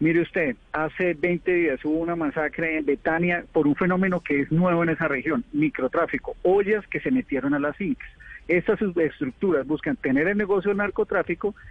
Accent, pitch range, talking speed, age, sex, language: Colombian, 140-180 Hz, 180 wpm, 40-59, male, Spanish